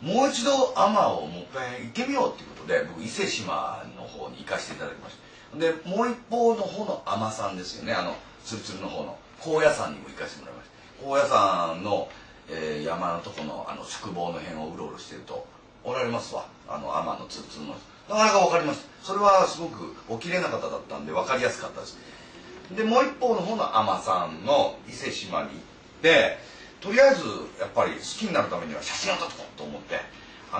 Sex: male